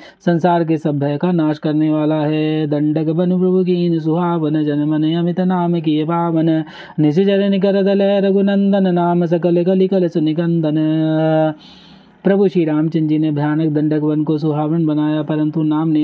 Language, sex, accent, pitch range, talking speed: Hindi, male, native, 155-175 Hz, 165 wpm